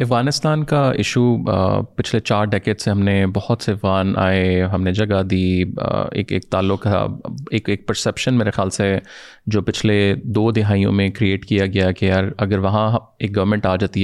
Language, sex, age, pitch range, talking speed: Urdu, male, 20-39, 95-110 Hz, 190 wpm